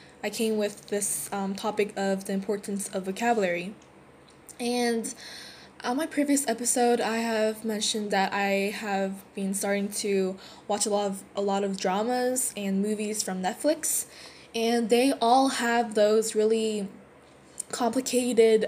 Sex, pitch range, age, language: female, 205-235 Hz, 10-29, Korean